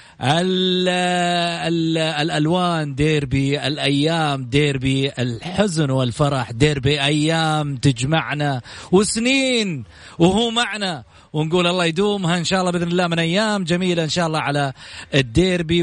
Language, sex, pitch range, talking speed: Arabic, male, 140-180 Hz, 105 wpm